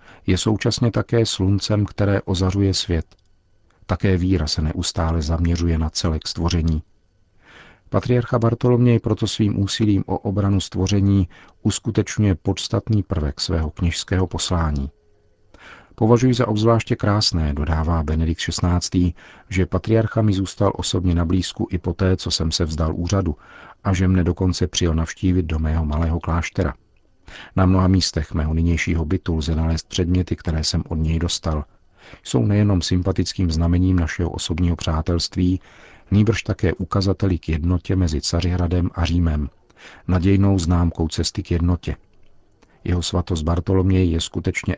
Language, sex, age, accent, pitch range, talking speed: Czech, male, 50-69, native, 85-100 Hz, 135 wpm